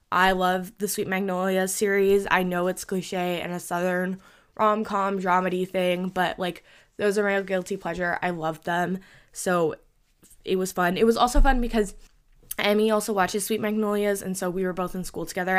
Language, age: English, 10-29